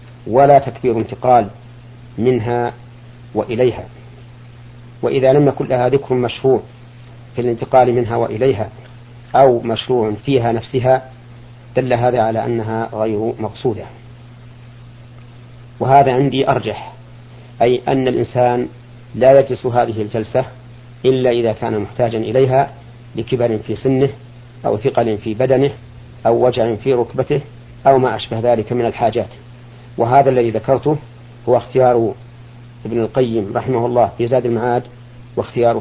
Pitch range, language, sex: 120-125 Hz, Arabic, male